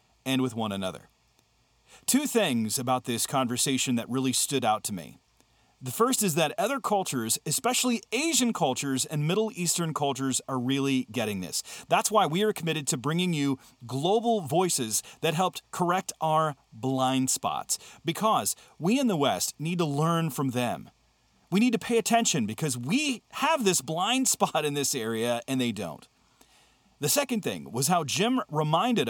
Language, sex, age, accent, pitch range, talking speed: English, male, 40-59, American, 130-190 Hz, 170 wpm